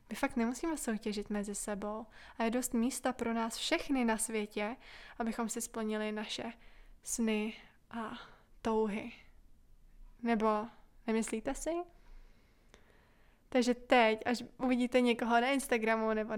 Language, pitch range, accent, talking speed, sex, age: Czech, 215-250 Hz, native, 120 wpm, female, 20-39